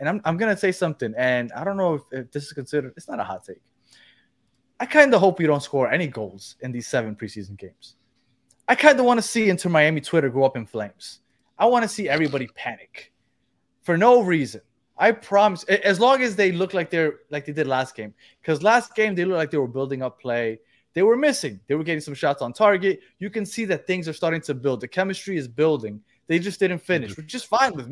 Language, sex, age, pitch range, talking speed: English, male, 20-39, 135-195 Hz, 245 wpm